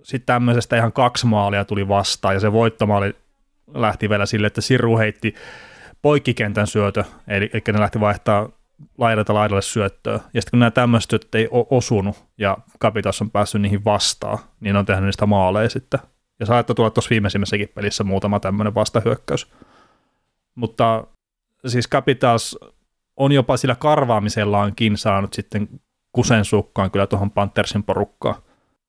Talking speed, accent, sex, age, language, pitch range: 145 wpm, native, male, 30-49, Finnish, 100-115 Hz